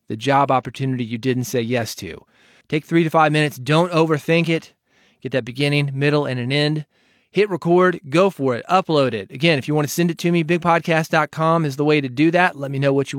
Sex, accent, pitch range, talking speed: male, American, 140-165 Hz, 230 wpm